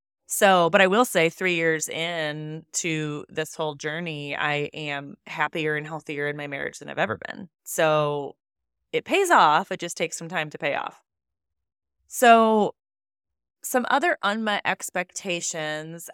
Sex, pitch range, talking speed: female, 160-220 Hz, 150 wpm